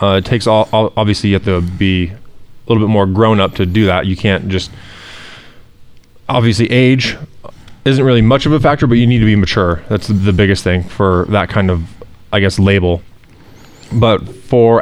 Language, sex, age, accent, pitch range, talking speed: English, male, 20-39, American, 95-120 Hz, 195 wpm